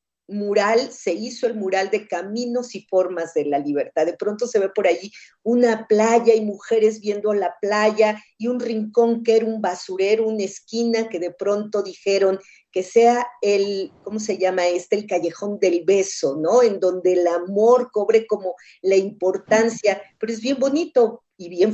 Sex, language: female, Spanish